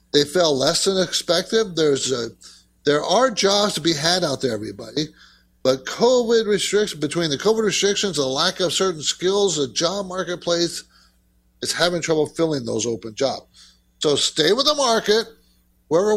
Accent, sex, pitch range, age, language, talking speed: American, male, 120-180 Hz, 50-69, English, 165 wpm